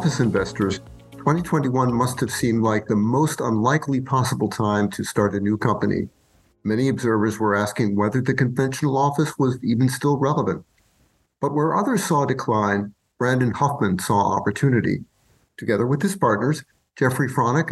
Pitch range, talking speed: 110-145 Hz, 150 wpm